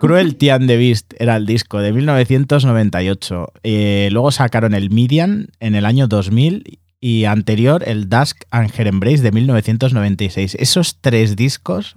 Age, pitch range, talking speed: 30-49, 95-125 Hz, 145 wpm